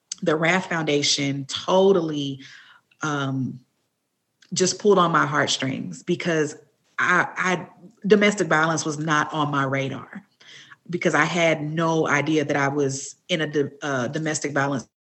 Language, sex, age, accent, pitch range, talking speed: English, female, 40-59, American, 145-180 Hz, 130 wpm